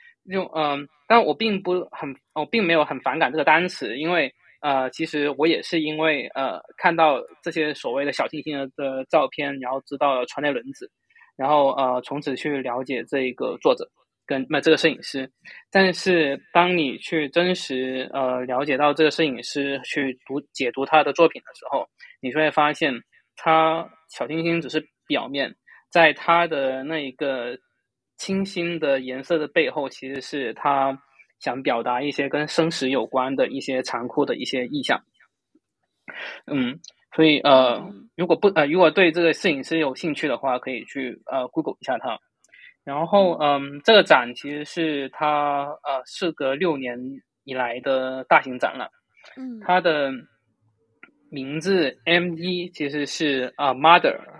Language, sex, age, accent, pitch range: Chinese, male, 20-39, native, 135-170 Hz